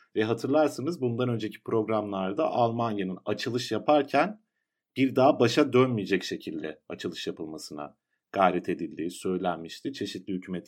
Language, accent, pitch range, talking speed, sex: Turkish, native, 95-135 Hz, 110 wpm, male